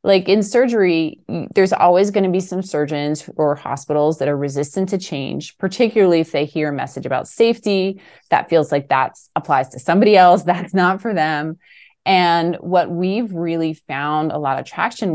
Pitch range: 145-170 Hz